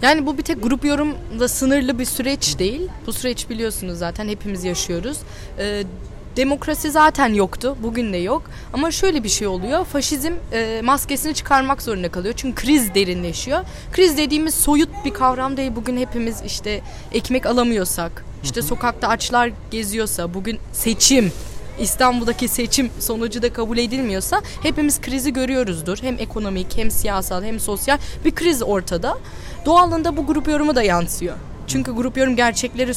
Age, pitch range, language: 10-29, 205-275 Hz, Turkish